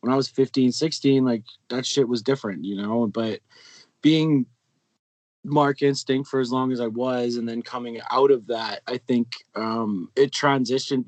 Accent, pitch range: American, 120-145 Hz